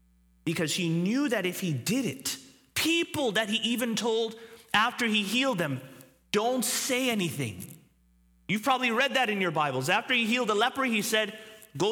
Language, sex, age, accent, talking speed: English, male, 30-49, American, 175 wpm